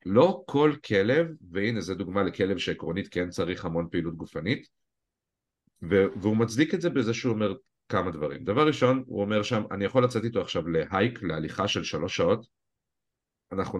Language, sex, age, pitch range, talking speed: Hebrew, male, 50-69, 95-120 Hz, 170 wpm